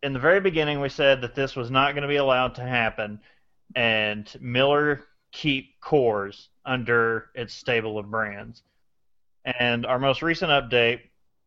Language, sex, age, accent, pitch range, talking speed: English, male, 30-49, American, 120-145 Hz, 155 wpm